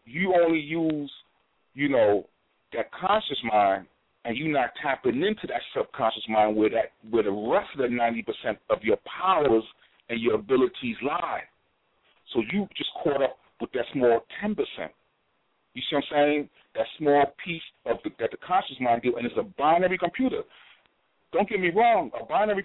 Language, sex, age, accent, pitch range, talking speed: English, male, 40-59, American, 120-195 Hz, 180 wpm